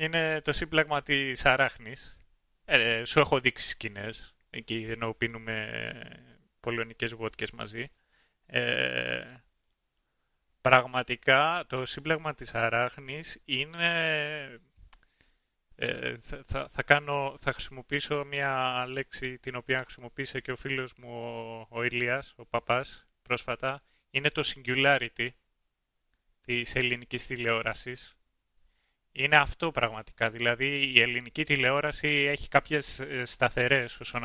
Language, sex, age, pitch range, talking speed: Greek, male, 30-49, 115-135 Hz, 105 wpm